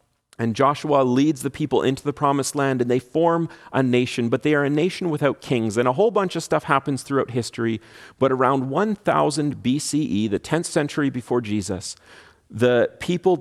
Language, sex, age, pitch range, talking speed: English, male, 40-59, 120-155 Hz, 185 wpm